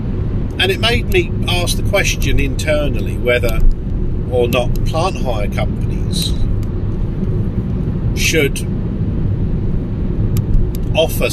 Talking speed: 85 wpm